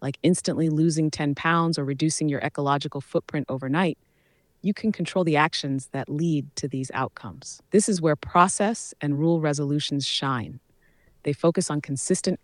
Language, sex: English, female